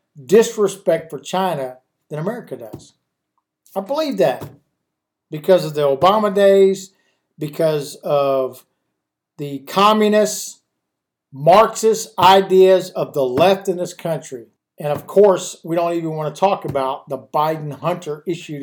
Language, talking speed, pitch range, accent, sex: English, 125 wpm, 155-205 Hz, American, male